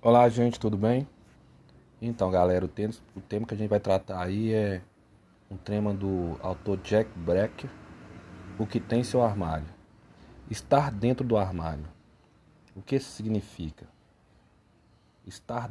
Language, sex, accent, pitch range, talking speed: Portuguese, male, Brazilian, 90-115 Hz, 140 wpm